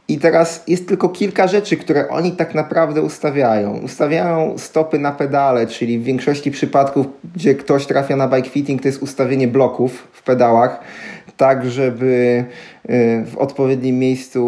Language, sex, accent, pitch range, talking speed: Polish, male, native, 125-150 Hz, 150 wpm